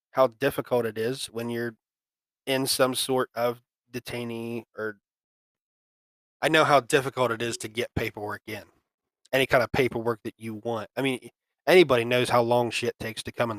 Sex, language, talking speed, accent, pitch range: male, English, 175 wpm, American, 110-130 Hz